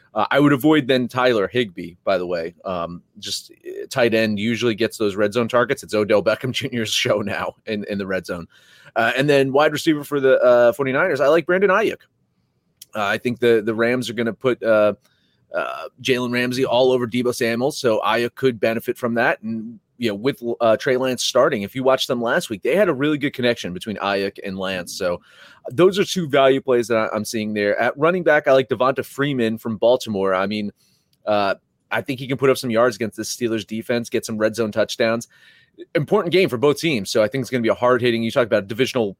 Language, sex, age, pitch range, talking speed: English, male, 30-49, 110-140 Hz, 225 wpm